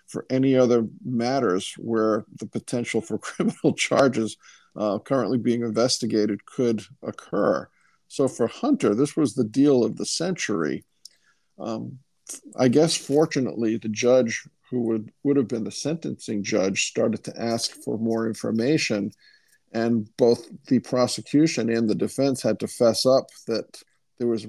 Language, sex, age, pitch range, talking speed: English, male, 50-69, 110-130 Hz, 145 wpm